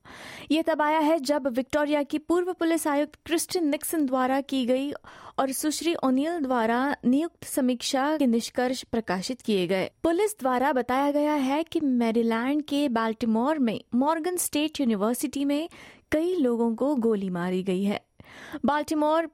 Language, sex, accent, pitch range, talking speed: Hindi, female, native, 235-300 Hz, 145 wpm